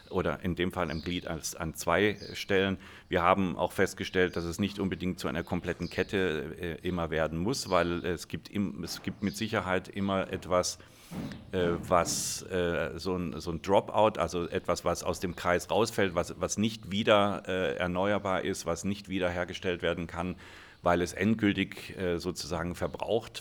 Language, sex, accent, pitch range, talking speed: German, male, German, 85-100 Hz, 180 wpm